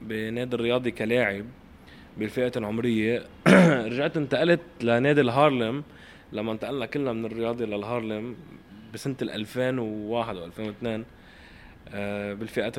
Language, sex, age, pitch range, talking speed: Arabic, male, 20-39, 110-130 Hz, 90 wpm